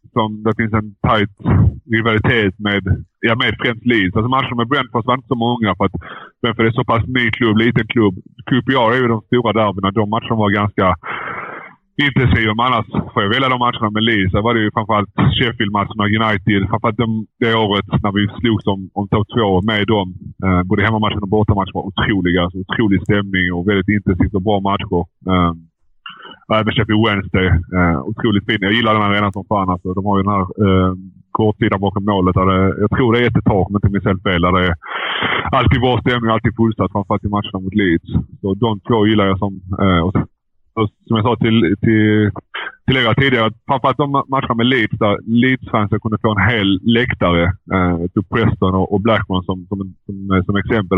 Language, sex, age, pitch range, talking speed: Swedish, male, 30-49, 95-115 Hz, 200 wpm